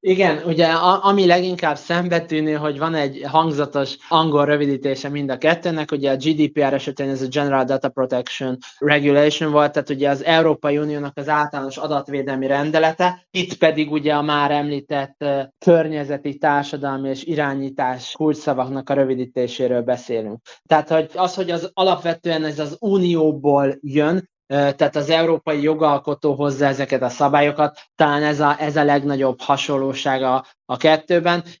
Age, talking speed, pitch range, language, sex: 20-39, 140 wpm, 140-155 Hz, Hungarian, male